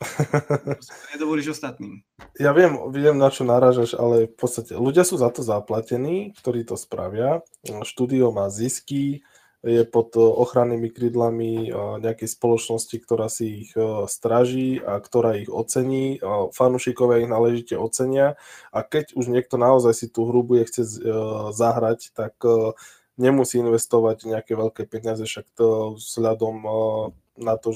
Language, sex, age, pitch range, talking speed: Slovak, male, 20-39, 110-120 Hz, 135 wpm